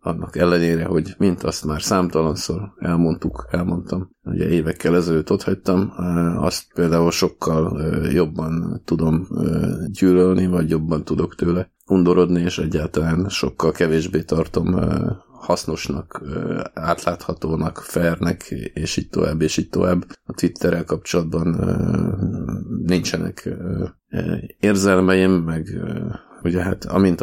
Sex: male